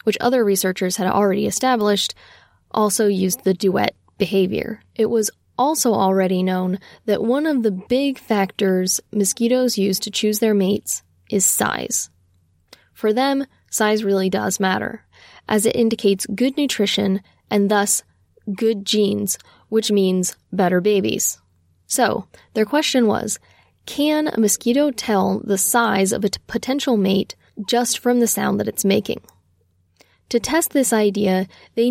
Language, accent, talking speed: English, American, 140 wpm